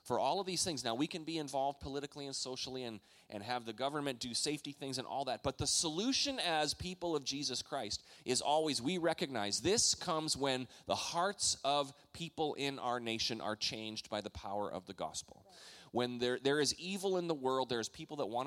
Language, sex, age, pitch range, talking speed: English, male, 30-49, 110-150 Hz, 215 wpm